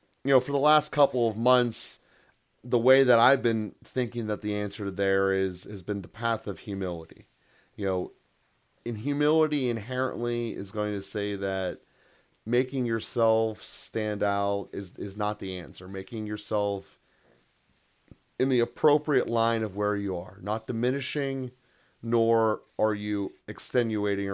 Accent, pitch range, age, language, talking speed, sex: American, 100-120 Hz, 30-49, English, 150 wpm, male